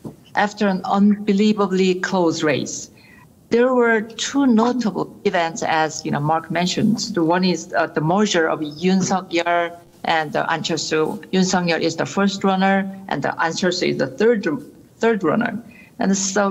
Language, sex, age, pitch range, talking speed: English, female, 50-69, 165-205 Hz, 165 wpm